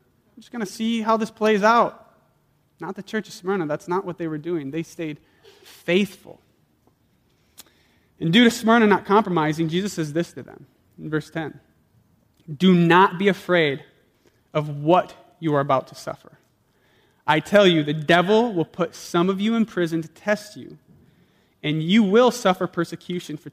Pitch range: 155-210 Hz